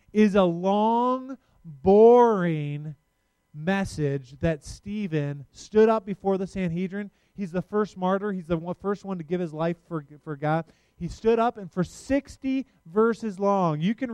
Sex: male